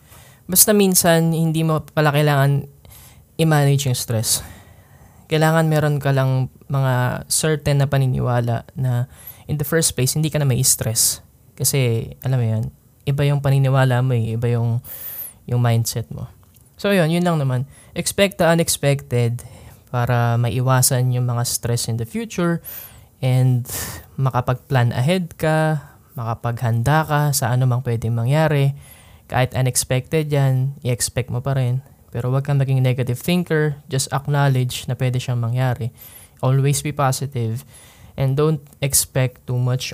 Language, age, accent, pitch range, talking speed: Filipino, 20-39, native, 120-145 Hz, 140 wpm